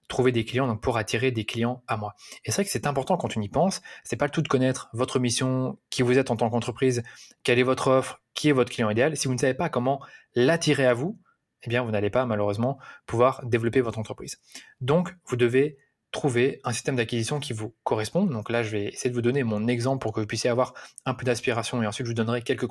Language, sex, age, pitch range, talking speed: French, male, 20-39, 115-135 Hz, 255 wpm